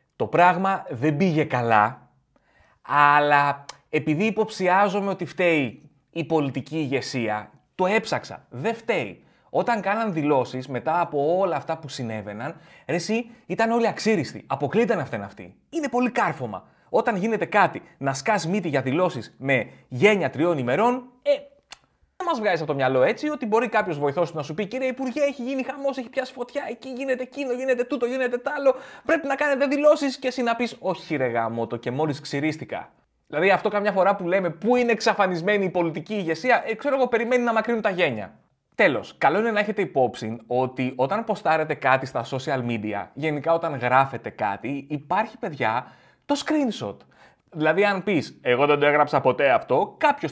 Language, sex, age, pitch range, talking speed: Greek, male, 30-49, 145-240 Hz, 175 wpm